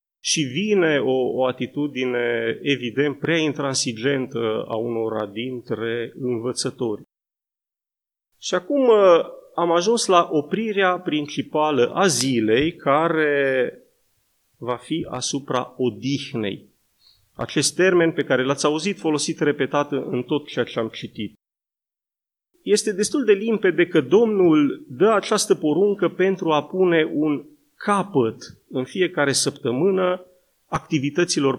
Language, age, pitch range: Romanian, 30-49, 130-170 Hz